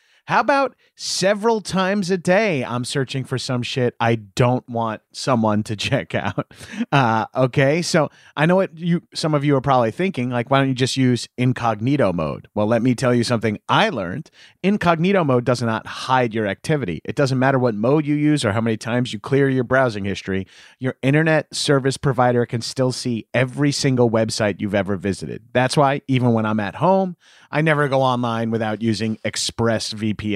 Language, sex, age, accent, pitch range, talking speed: English, male, 30-49, American, 115-155 Hz, 190 wpm